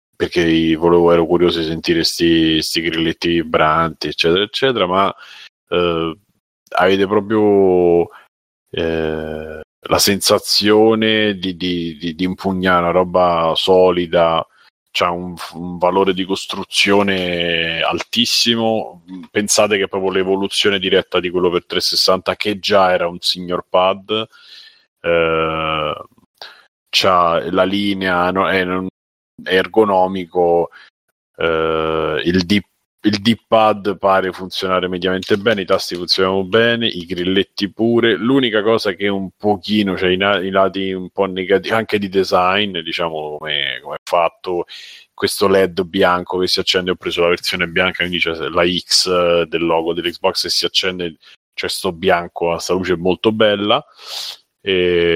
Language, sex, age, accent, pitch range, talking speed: Italian, male, 30-49, native, 85-100 Hz, 135 wpm